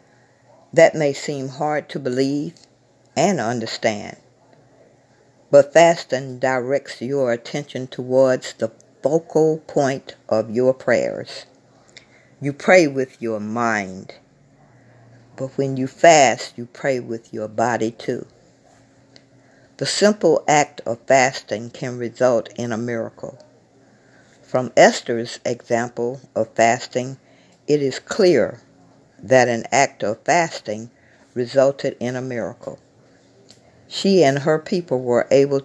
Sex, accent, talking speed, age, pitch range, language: female, American, 115 wpm, 60-79, 115-145 Hz, English